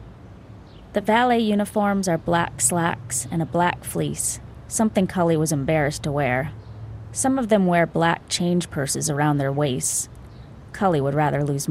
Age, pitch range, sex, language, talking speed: 20-39, 145-185 Hz, female, English, 155 wpm